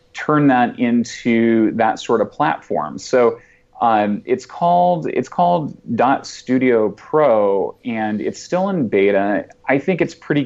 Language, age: English, 30-49